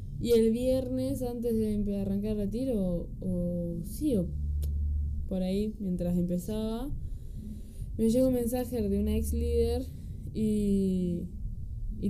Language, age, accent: Spanish, 10-29, Argentinian